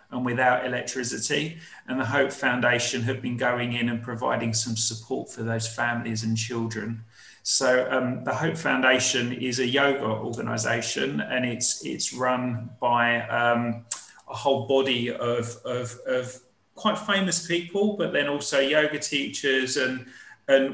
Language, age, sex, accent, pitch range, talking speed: English, 30-49, male, British, 120-140 Hz, 150 wpm